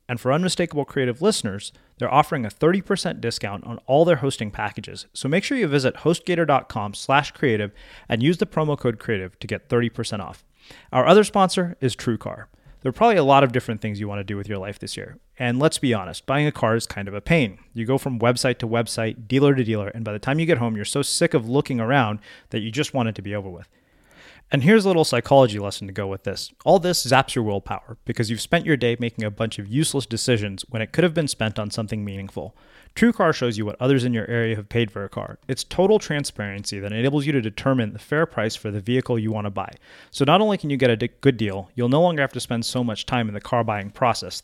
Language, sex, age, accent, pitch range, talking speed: English, male, 30-49, American, 110-140 Hz, 255 wpm